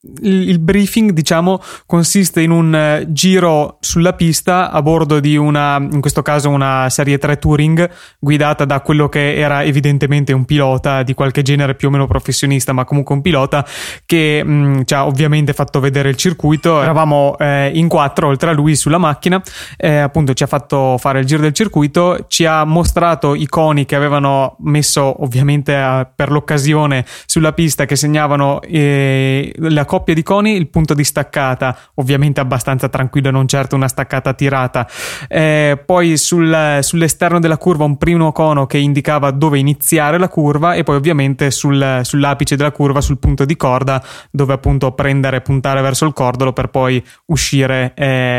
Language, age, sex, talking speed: Italian, 20-39, male, 170 wpm